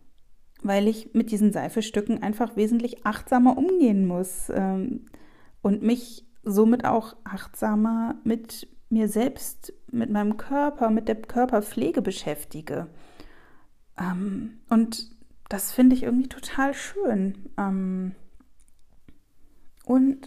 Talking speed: 100 wpm